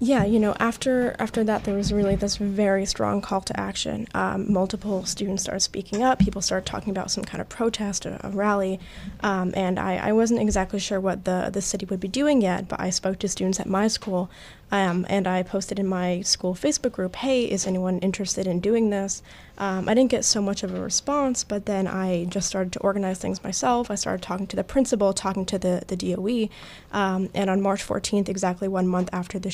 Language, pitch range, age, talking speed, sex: English, 190-205 Hz, 10-29, 225 wpm, female